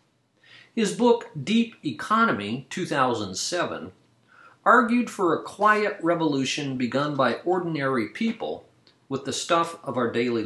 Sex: male